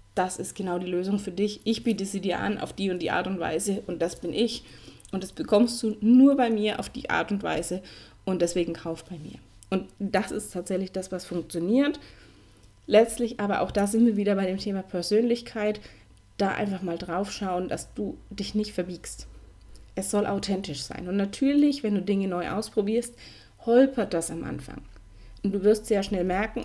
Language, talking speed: German, 200 wpm